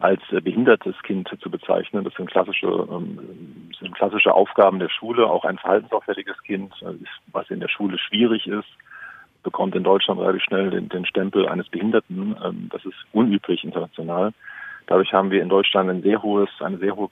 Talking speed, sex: 170 wpm, male